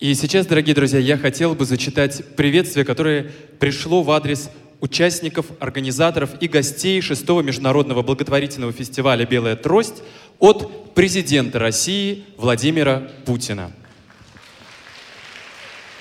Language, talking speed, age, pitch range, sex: Russian, 105 wpm, 20-39, 120-160 Hz, male